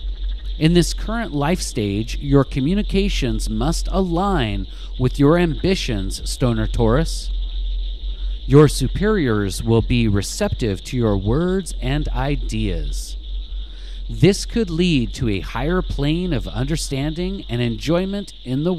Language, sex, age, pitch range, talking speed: English, male, 40-59, 115-170 Hz, 120 wpm